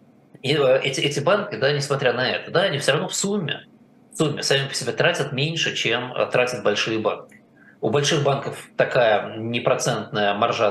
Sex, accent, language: male, native, Russian